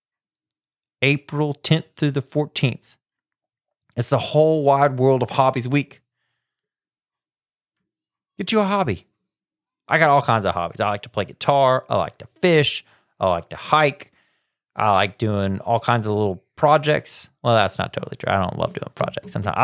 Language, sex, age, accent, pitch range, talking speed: English, male, 30-49, American, 105-150 Hz, 170 wpm